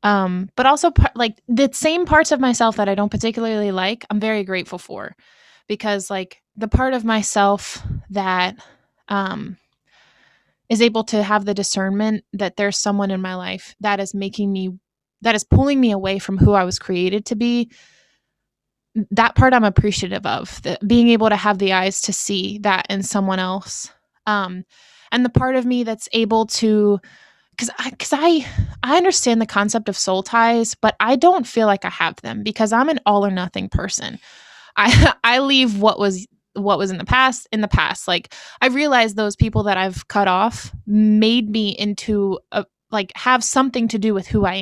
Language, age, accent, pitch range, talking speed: English, 20-39, American, 195-230 Hz, 190 wpm